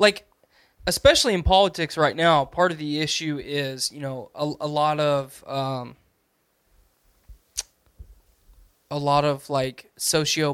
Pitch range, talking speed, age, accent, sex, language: 125-160 Hz, 130 wpm, 20-39, American, male, English